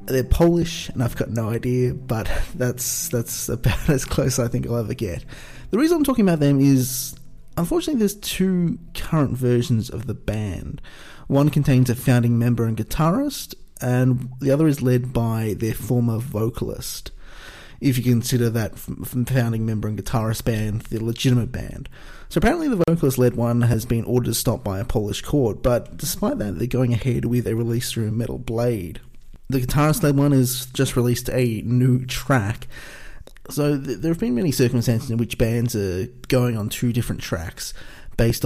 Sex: male